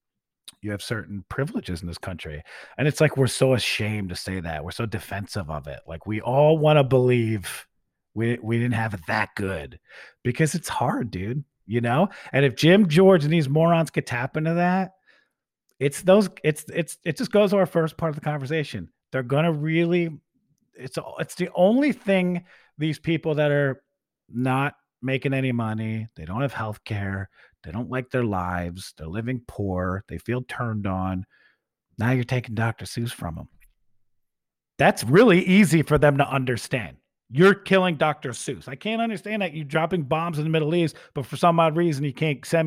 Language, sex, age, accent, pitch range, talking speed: English, male, 40-59, American, 110-160 Hz, 190 wpm